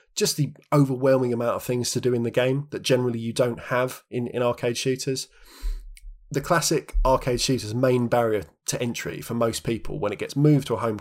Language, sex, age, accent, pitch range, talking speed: English, male, 20-39, British, 115-145 Hz, 205 wpm